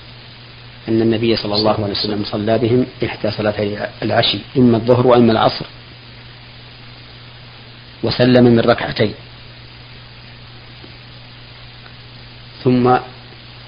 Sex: male